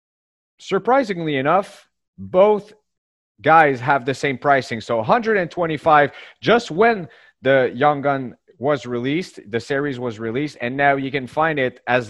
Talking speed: 140 wpm